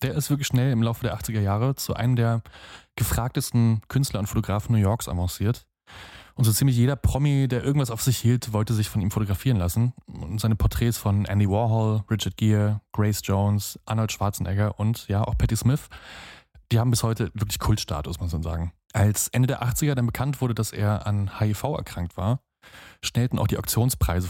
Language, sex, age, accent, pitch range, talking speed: German, male, 20-39, German, 100-120 Hz, 195 wpm